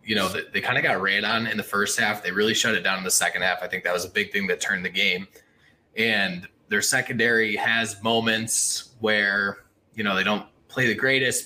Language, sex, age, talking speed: English, male, 20-39, 235 wpm